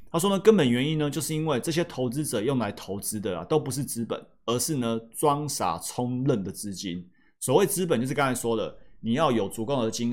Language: Chinese